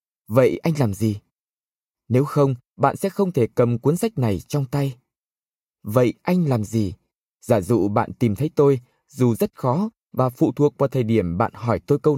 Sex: male